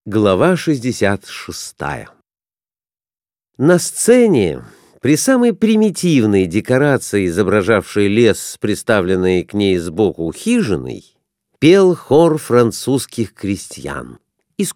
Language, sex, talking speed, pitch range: Russian, male, 80 wpm, 105-175 Hz